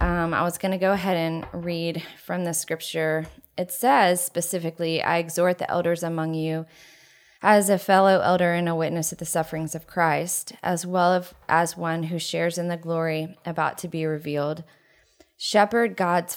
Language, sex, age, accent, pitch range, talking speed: English, female, 20-39, American, 160-180 Hz, 175 wpm